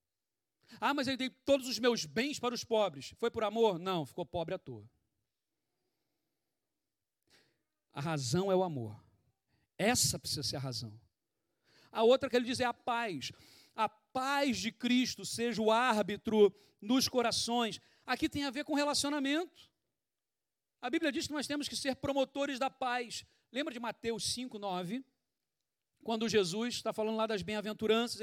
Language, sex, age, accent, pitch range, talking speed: Portuguese, male, 40-59, Brazilian, 170-250 Hz, 155 wpm